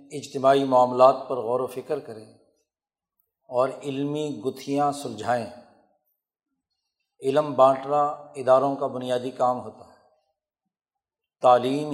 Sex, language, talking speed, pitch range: male, Urdu, 100 wpm, 130-150 Hz